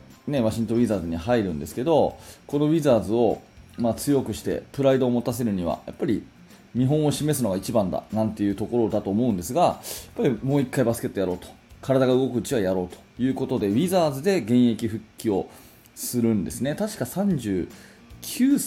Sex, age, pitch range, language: male, 20-39, 105-150 Hz, Japanese